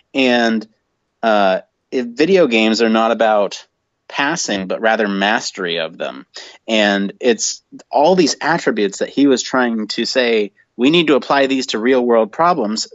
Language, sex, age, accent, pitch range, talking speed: English, male, 30-49, American, 105-130 Hz, 160 wpm